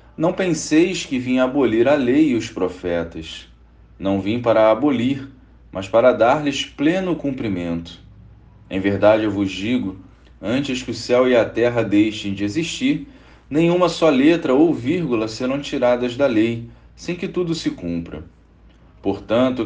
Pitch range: 95-155 Hz